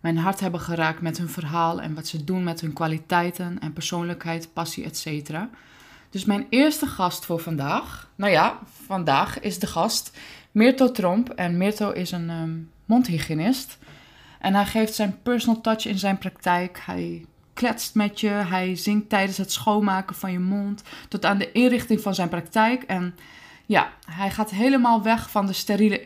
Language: Dutch